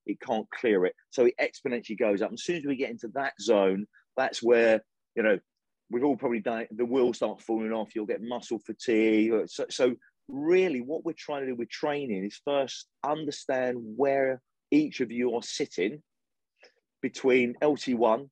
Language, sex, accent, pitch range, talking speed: English, male, British, 110-145 Hz, 185 wpm